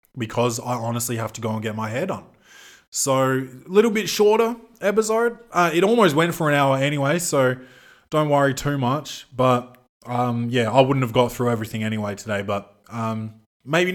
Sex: male